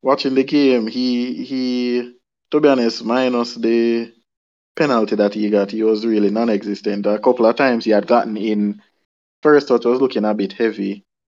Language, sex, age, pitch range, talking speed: English, male, 20-39, 105-125 Hz, 175 wpm